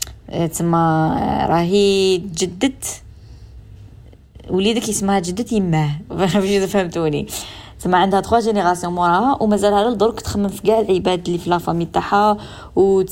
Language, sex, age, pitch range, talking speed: Arabic, female, 20-39, 175-215 Hz, 125 wpm